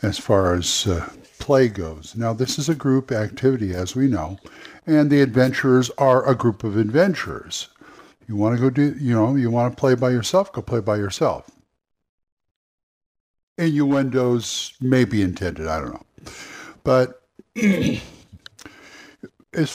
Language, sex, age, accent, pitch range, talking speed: English, male, 60-79, American, 105-135 Hz, 145 wpm